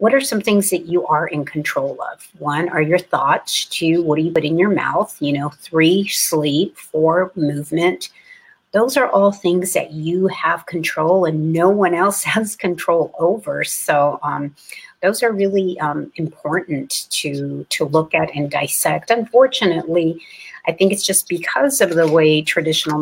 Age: 50-69